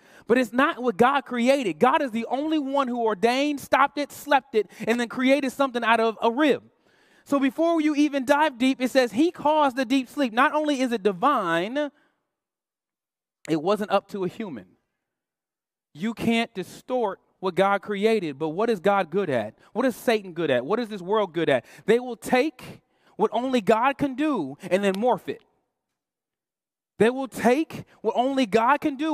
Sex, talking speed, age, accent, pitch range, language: male, 190 wpm, 30-49, American, 210-285 Hz, English